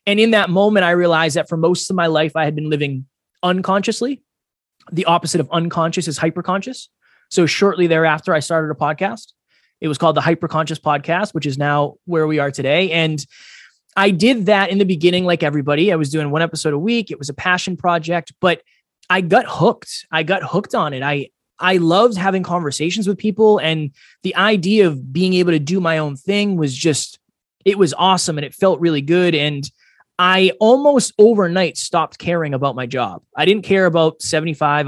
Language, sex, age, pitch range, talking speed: English, male, 20-39, 150-185 Hz, 200 wpm